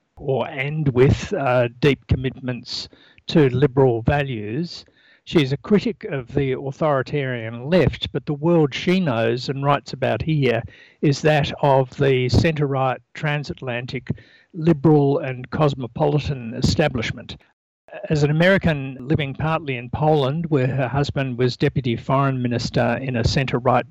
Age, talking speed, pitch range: 60-79, 130 wpm, 125-155 Hz